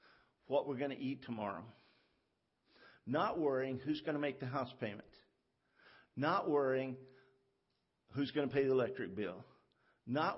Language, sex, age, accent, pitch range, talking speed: English, male, 50-69, American, 140-200 Hz, 145 wpm